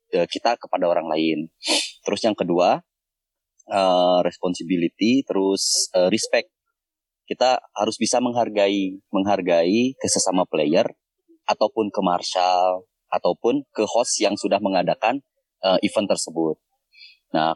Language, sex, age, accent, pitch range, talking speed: Indonesian, male, 20-39, native, 95-135 Hz, 110 wpm